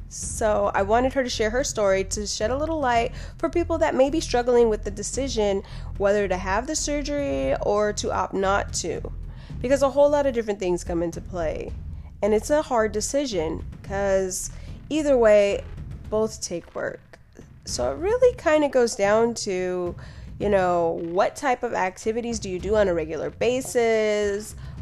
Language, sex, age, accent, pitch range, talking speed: English, female, 20-39, American, 185-265 Hz, 180 wpm